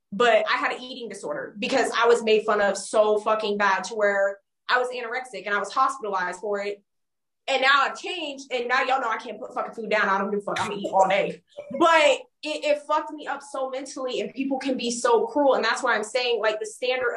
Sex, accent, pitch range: female, American, 225-290 Hz